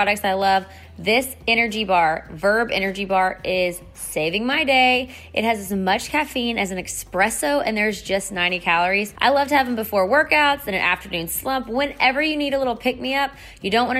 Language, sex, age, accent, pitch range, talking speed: English, female, 20-39, American, 190-245 Hz, 200 wpm